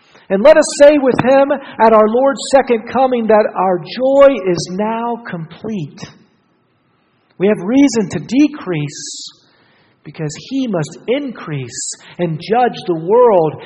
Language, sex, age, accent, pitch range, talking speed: English, male, 50-69, American, 160-235 Hz, 130 wpm